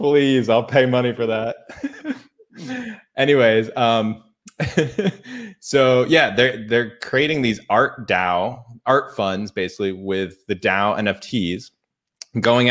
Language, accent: English, American